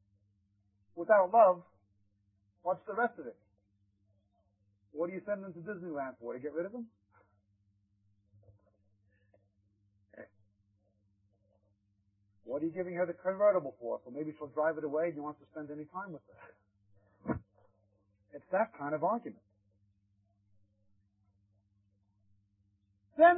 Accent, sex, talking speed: American, male, 125 wpm